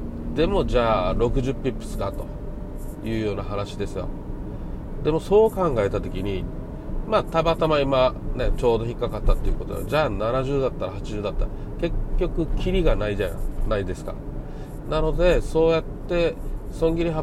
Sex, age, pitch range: male, 40-59, 100-160 Hz